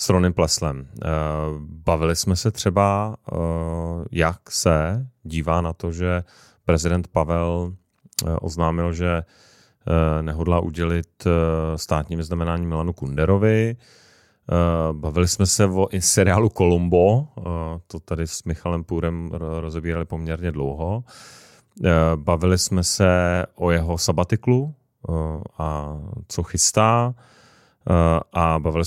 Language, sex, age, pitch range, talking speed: Czech, male, 30-49, 80-90 Hz, 100 wpm